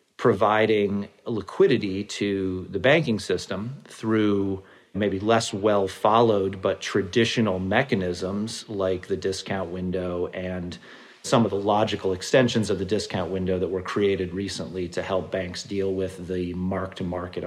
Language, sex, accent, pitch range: English, male, American, 95-120 Hz